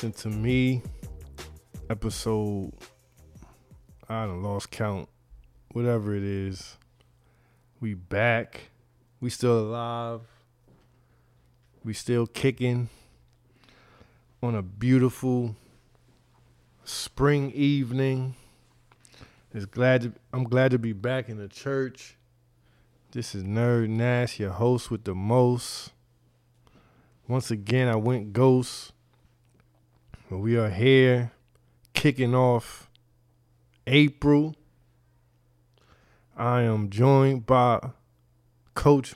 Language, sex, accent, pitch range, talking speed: English, male, American, 110-130 Hz, 85 wpm